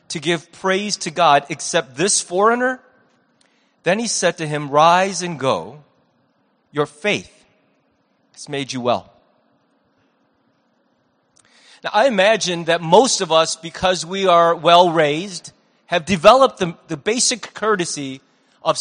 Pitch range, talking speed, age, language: 165-230 Hz, 130 wpm, 30-49, English